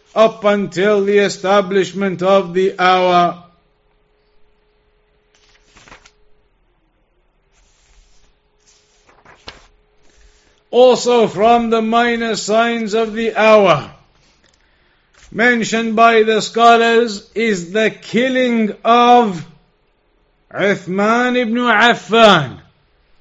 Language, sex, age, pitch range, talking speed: English, male, 50-69, 205-235 Hz, 65 wpm